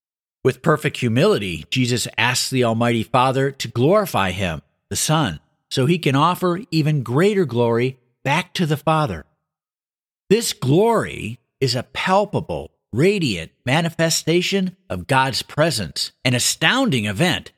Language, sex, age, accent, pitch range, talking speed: English, male, 50-69, American, 115-165 Hz, 125 wpm